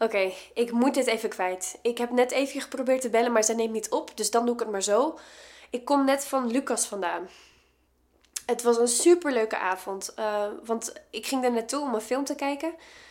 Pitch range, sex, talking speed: 210-265 Hz, female, 220 wpm